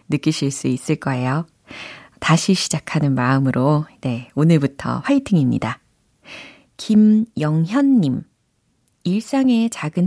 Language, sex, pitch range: Korean, female, 140-220 Hz